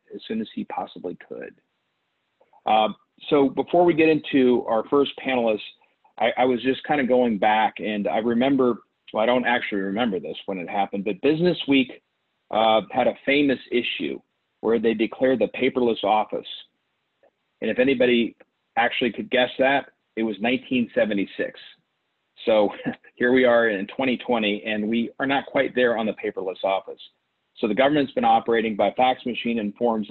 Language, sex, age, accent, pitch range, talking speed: English, male, 40-59, American, 110-130 Hz, 170 wpm